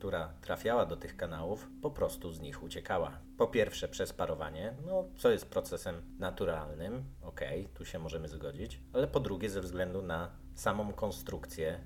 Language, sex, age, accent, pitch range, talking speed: Polish, male, 40-59, native, 75-95 Hz, 160 wpm